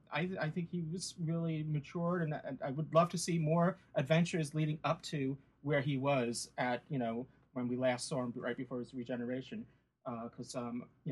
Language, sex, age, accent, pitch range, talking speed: English, male, 30-49, American, 125-160 Hz, 215 wpm